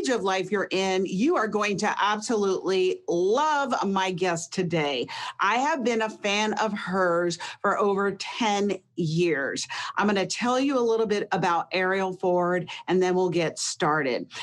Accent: American